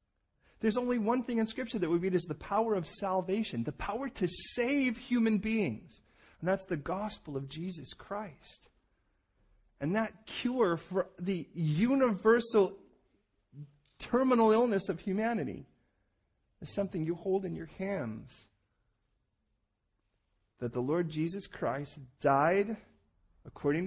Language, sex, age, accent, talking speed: English, male, 40-59, American, 130 wpm